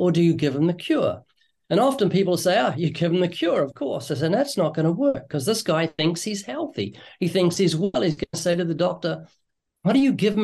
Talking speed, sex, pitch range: 265 wpm, male, 145-195 Hz